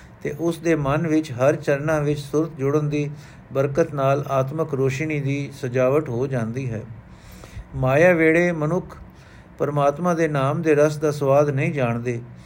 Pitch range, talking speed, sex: 135-155 Hz, 155 wpm, male